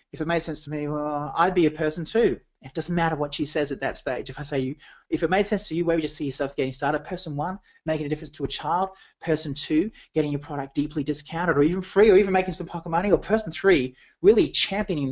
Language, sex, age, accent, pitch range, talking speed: English, male, 30-49, Australian, 150-195 Hz, 265 wpm